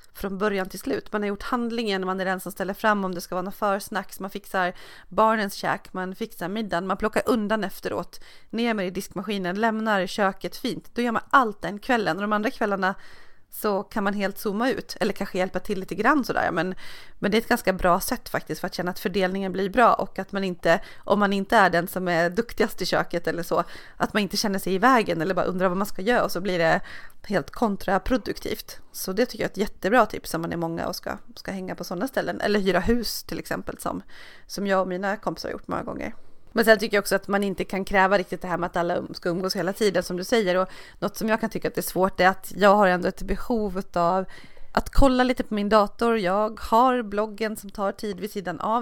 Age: 30-49